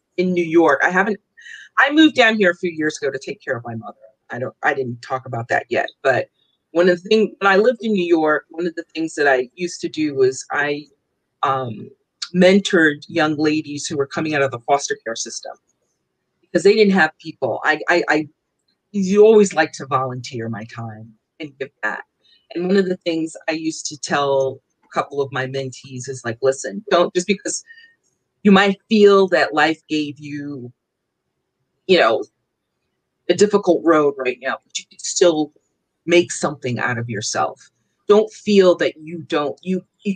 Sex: female